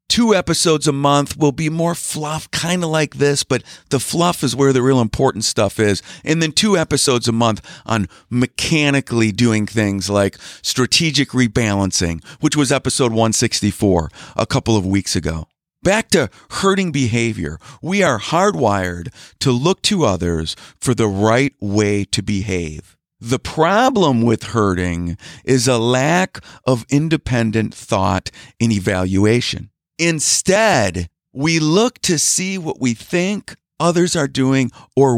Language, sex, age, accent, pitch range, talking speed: English, male, 50-69, American, 105-150 Hz, 145 wpm